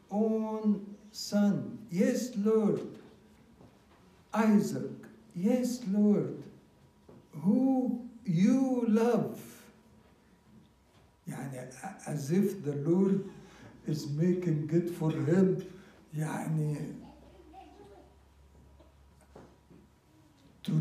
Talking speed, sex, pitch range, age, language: 60 wpm, male, 150-205 Hz, 60-79, English